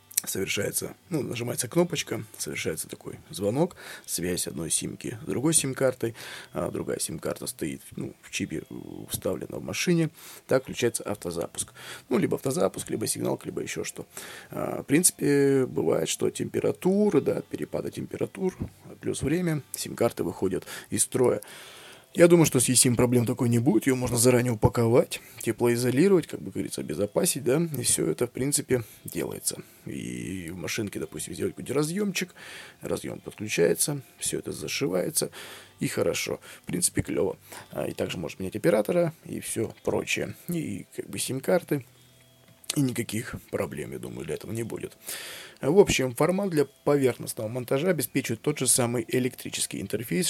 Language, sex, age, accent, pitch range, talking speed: Russian, male, 20-39, native, 120-150 Hz, 145 wpm